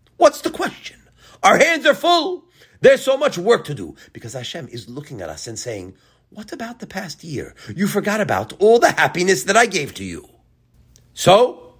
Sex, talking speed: male, 195 wpm